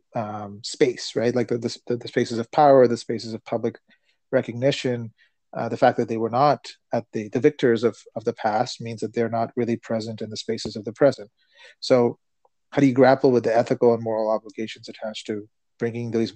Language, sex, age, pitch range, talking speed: English, male, 30-49, 115-135 Hz, 210 wpm